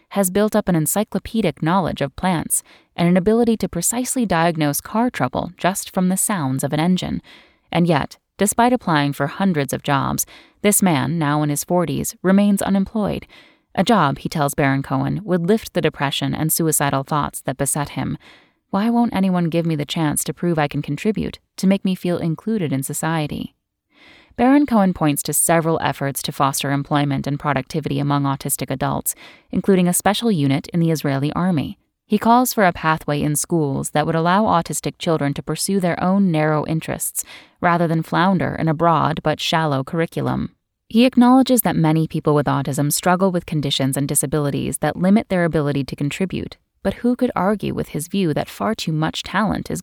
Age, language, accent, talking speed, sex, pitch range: 10-29, English, American, 185 wpm, female, 145-195 Hz